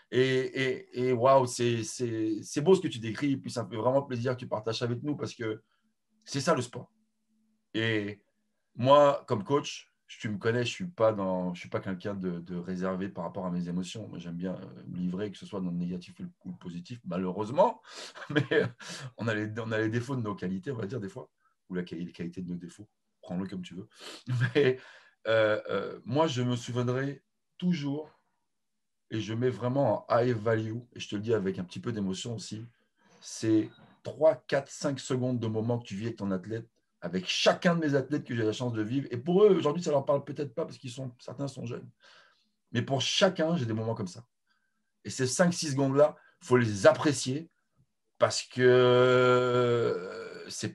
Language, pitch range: English, 105-145 Hz